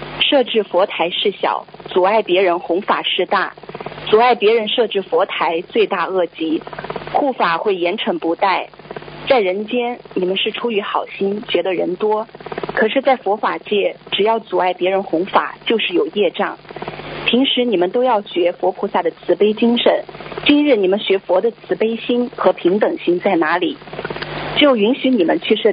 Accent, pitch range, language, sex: native, 185-265 Hz, Chinese, female